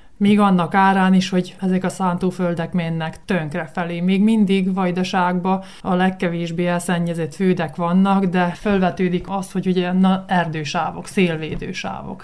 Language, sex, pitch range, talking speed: Hungarian, male, 170-195 Hz, 130 wpm